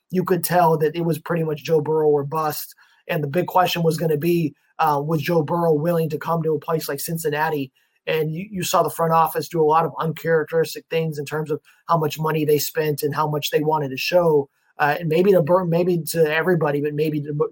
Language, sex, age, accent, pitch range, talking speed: English, male, 20-39, American, 155-180 Hz, 245 wpm